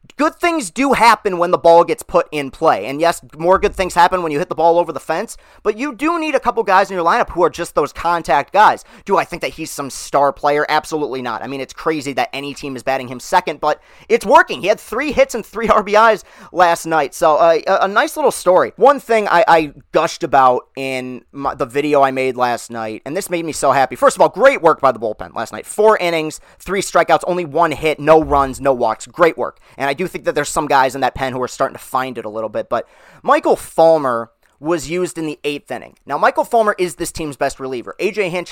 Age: 30-49